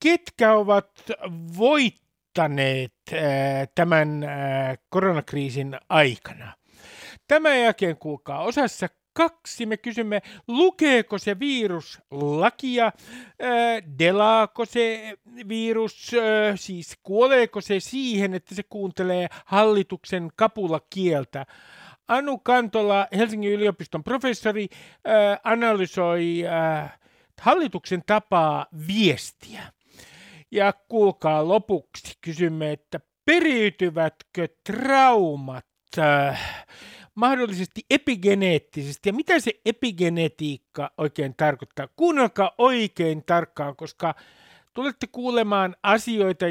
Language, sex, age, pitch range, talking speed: Finnish, male, 50-69, 160-225 Hz, 85 wpm